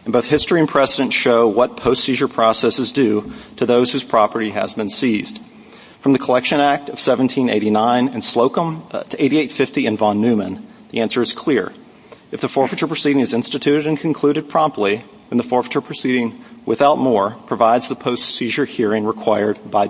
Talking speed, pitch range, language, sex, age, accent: 170 wpm, 115-140 Hz, English, male, 40-59, American